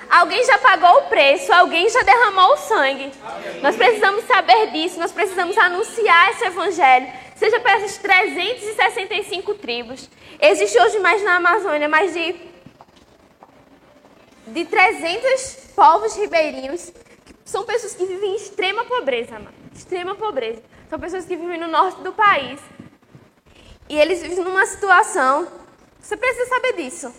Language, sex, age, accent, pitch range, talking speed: Portuguese, female, 10-29, Brazilian, 285-400 Hz, 140 wpm